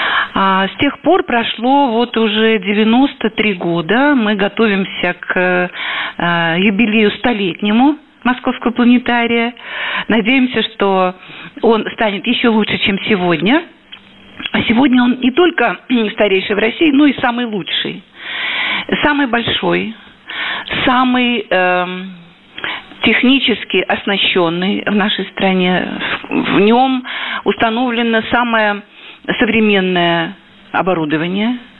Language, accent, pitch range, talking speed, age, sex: Russian, native, 195-245 Hz, 95 wpm, 50-69, female